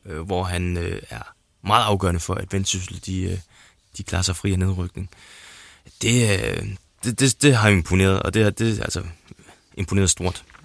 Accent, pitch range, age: native, 95-105 Hz, 20-39